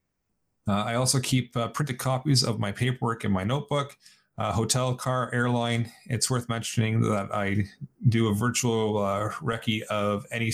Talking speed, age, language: 165 wpm, 30-49, English